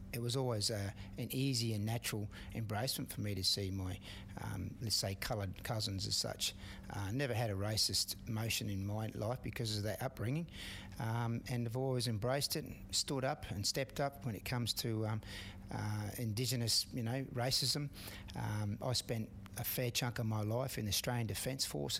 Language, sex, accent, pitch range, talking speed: English, male, Australian, 100-120 Hz, 190 wpm